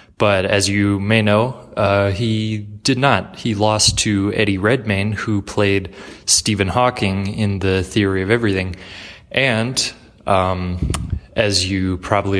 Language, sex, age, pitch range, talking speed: English, male, 20-39, 95-110 Hz, 135 wpm